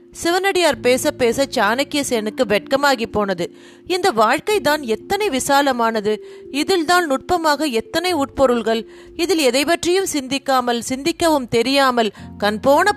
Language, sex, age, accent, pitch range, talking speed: Tamil, female, 30-49, native, 225-285 Hz, 105 wpm